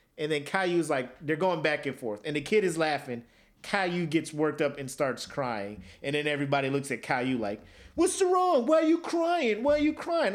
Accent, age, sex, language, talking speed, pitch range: American, 30-49, male, English, 225 wpm, 145-225 Hz